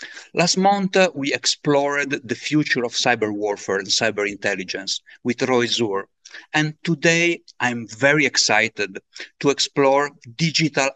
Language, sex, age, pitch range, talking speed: English, male, 50-69, 115-155 Hz, 125 wpm